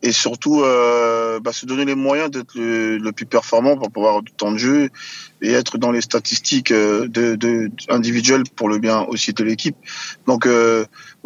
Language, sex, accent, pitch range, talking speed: French, male, French, 120-145 Hz, 190 wpm